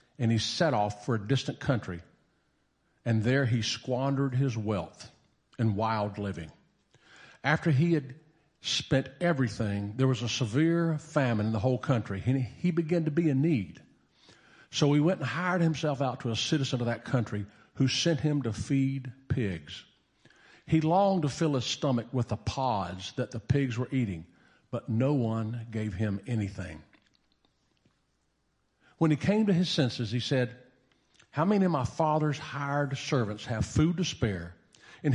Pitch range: 115-150 Hz